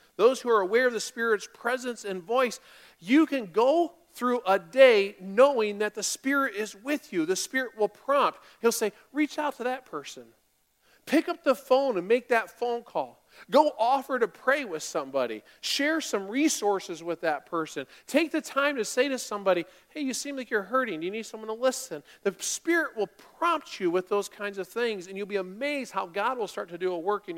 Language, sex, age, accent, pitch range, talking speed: English, male, 40-59, American, 165-240 Hz, 215 wpm